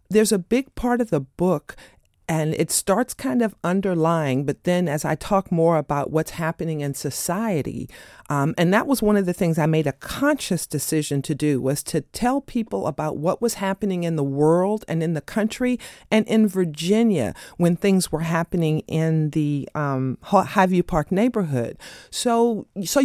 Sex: female